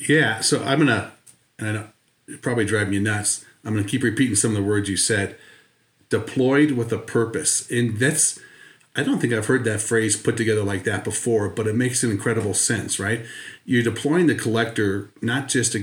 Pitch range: 105-125 Hz